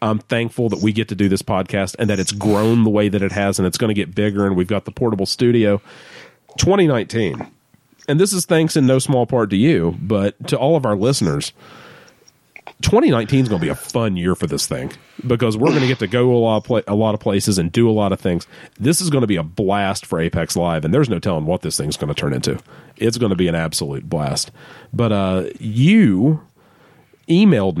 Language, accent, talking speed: English, American, 235 wpm